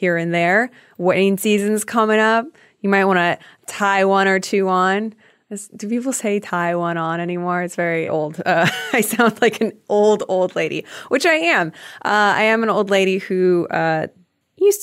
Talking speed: 185 wpm